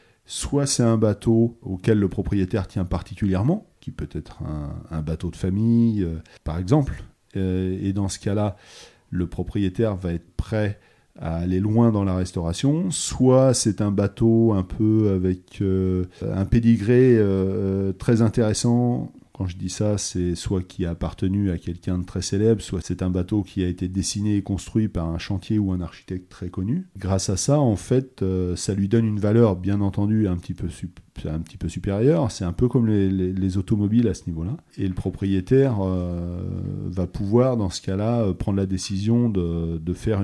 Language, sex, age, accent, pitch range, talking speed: French, male, 40-59, French, 90-115 Hz, 185 wpm